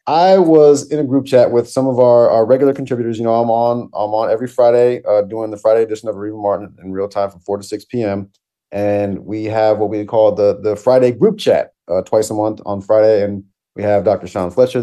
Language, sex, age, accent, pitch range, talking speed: English, male, 30-49, American, 105-140 Hz, 245 wpm